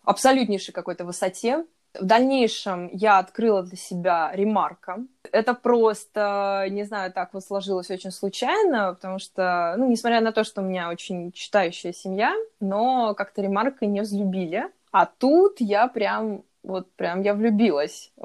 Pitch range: 185-235 Hz